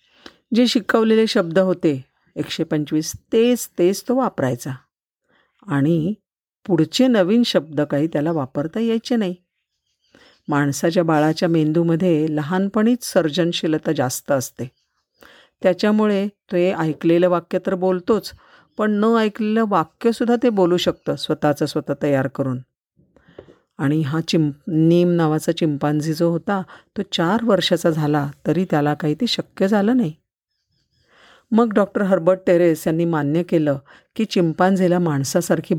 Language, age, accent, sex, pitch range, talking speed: Marathi, 50-69, native, female, 150-195 Hz, 120 wpm